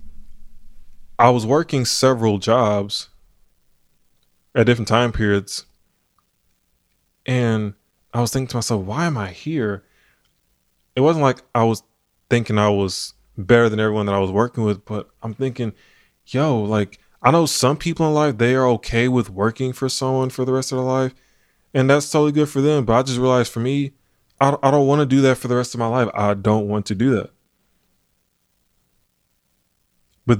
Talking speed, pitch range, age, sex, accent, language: 180 wpm, 105-130 Hz, 20-39, male, American, English